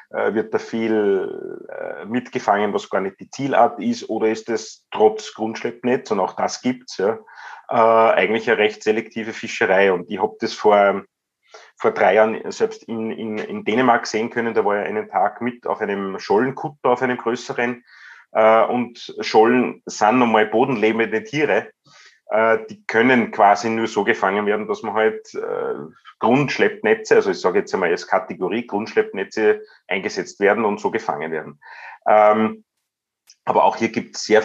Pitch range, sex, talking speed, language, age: 110-130 Hz, male, 160 wpm, German, 30-49